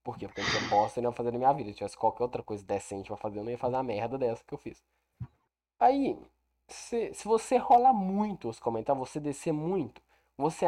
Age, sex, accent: 10-29, male, Brazilian